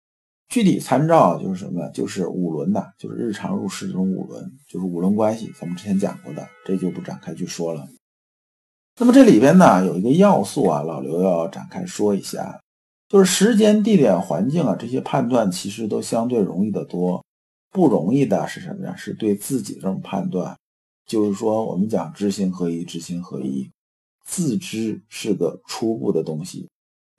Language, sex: Chinese, male